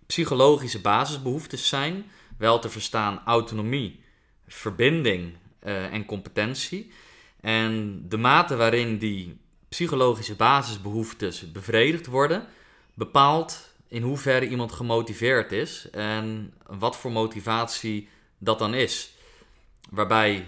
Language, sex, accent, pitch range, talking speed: Dutch, male, Dutch, 100-120 Hz, 100 wpm